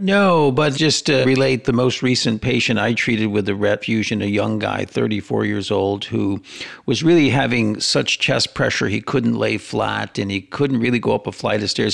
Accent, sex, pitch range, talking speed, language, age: American, male, 105-125 Hz, 205 wpm, English, 50-69